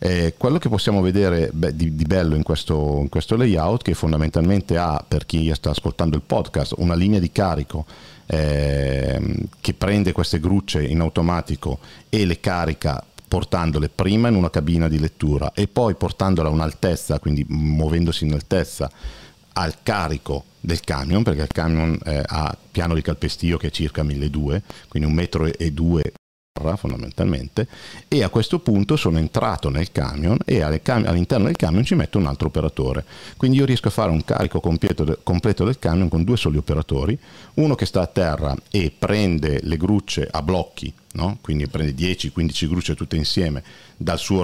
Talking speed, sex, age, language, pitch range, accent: 165 wpm, male, 50-69, Italian, 75-95 Hz, native